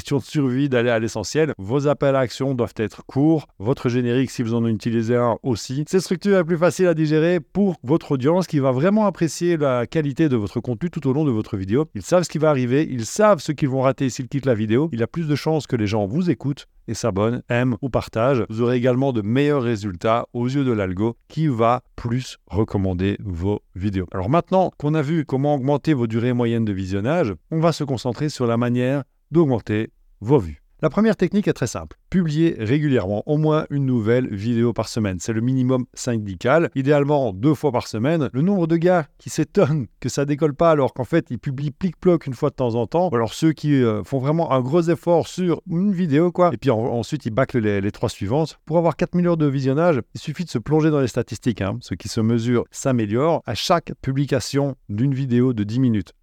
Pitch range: 115-160 Hz